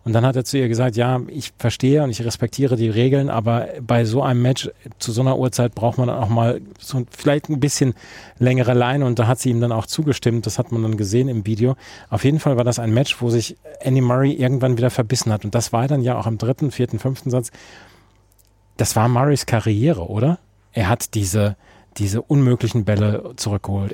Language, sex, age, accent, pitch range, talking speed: German, male, 40-59, German, 110-130 Hz, 225 wpm